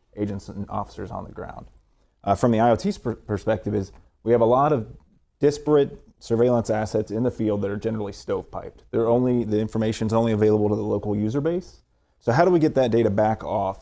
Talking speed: 205 wpm